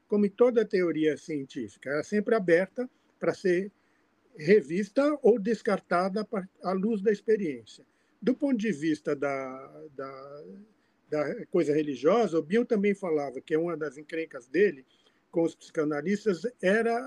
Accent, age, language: Brazilian, 50-69, Portuguese